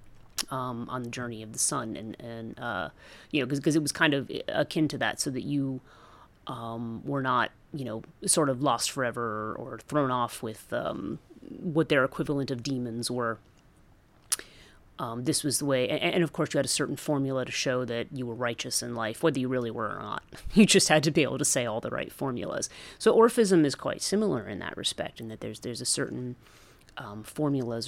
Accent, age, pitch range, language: American, 30-49, 120-150 Hz, English